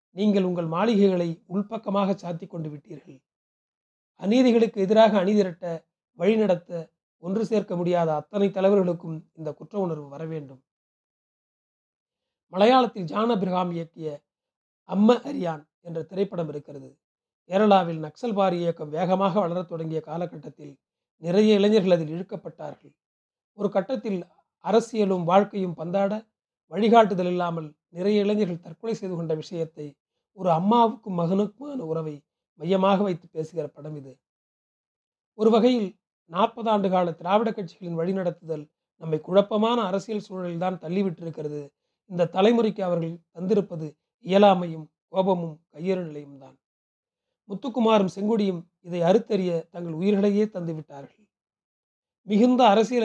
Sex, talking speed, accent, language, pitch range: male, 110 wpm, native, Tamil, 165-205 Hz